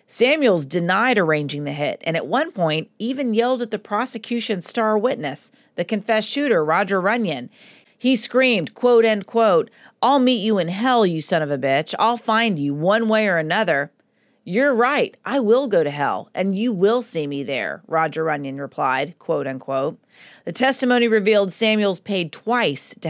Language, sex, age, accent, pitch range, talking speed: English, female, 40-59, American, 165-230 Hz, 175 wpm